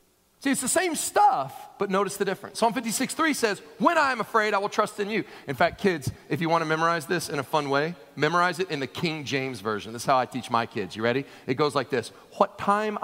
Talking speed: 260 wpm